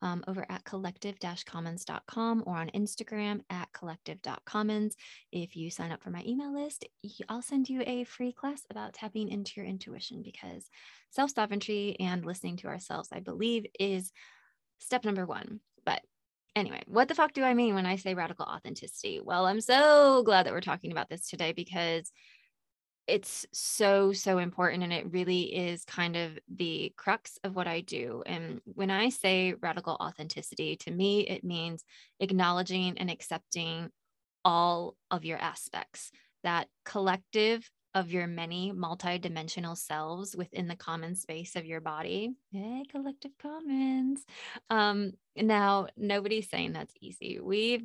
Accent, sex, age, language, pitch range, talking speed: American, female, 20-39, English, 175-220 Hz, 155 wpm